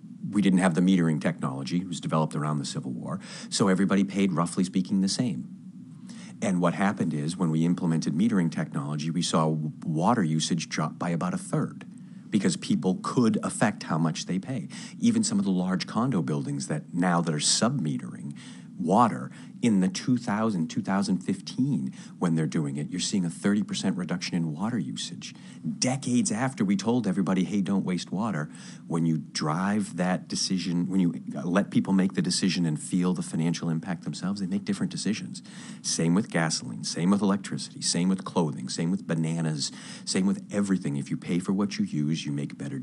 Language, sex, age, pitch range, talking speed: English, male, 50-69, 80-105 Hz, 180 wpm